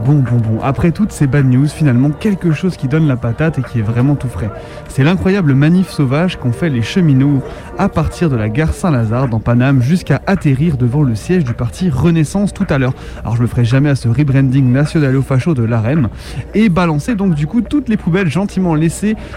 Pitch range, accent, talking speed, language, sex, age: 120-175 Hz, French, 225 wpm, French, male, 20-39